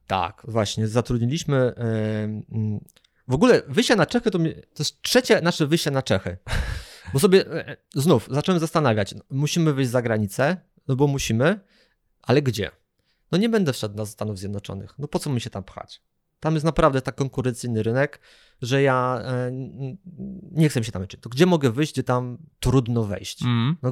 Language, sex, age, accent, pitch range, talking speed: Polish, male, 20-39, native, 110-150 Hz, 165 wpm